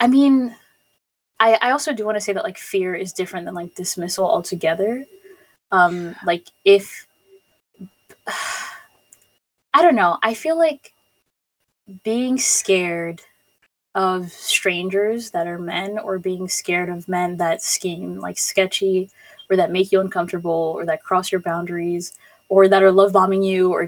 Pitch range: 175-205 Hz